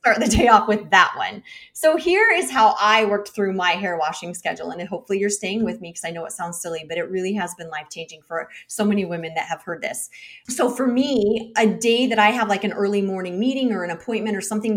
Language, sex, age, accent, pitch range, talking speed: English, female, 30-49, American, 180-230 Hz, 255 wpm